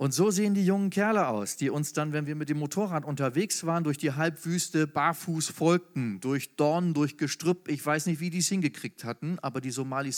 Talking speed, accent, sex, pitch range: 220 wpm, German, male, 130-170 Hz